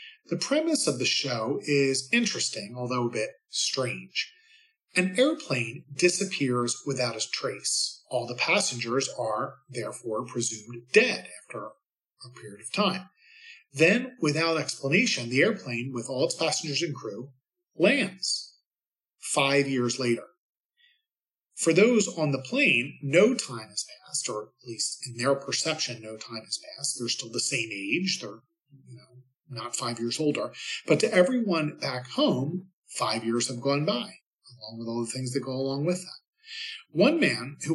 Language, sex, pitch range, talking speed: English, male, 125-185 Hz, 155 wpm